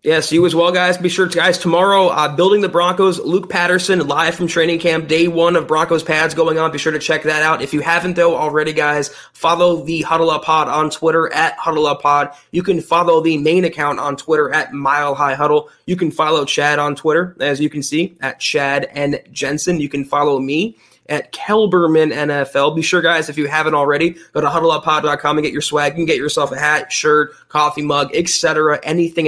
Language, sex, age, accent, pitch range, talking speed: English, male, 20-39, American, 150-175 Hz, 220 wpm